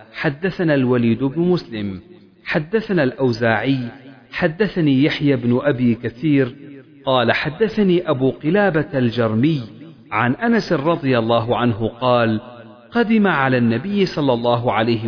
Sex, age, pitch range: male, 40-59, 120-165 Hz